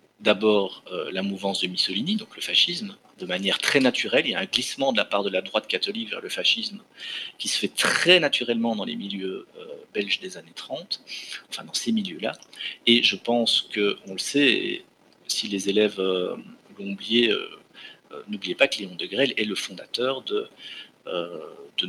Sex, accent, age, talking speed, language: male, French, 40-59, 200 wpm, French